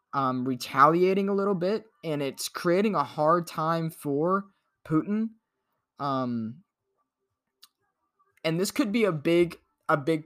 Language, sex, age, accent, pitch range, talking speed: English, male, 20-39, American, 115-155 Hz, 130 wpm